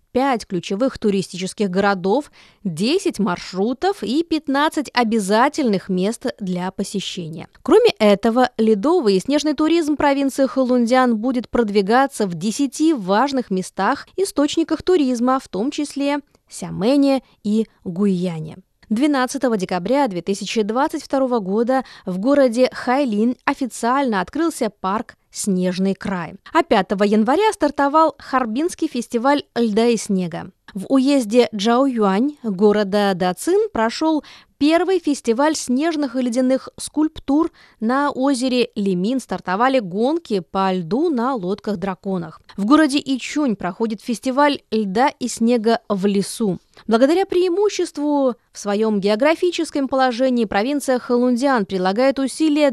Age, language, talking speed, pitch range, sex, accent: 20-39, Russian, 110 wpm, 205-280 Hz, female, native